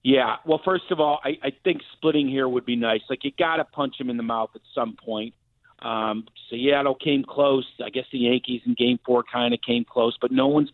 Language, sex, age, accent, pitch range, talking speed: English, male, 40-59, American, 130-180 Hz, 240 wpm